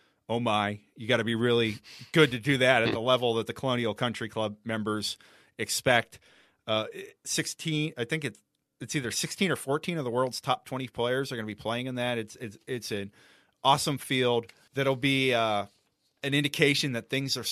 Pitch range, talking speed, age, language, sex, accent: 110-130 Hz, 200 wpm, 30-49, English, male, American